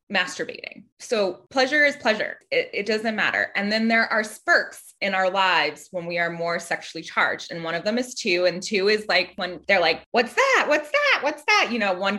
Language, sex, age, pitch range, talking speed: English, female, 20-39, 180-260 Hz, 220 wpm